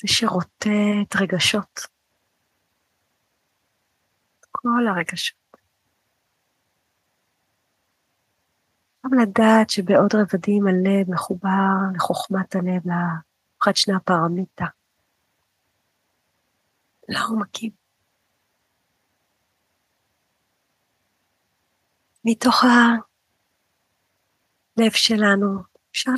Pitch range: 185-220 Hz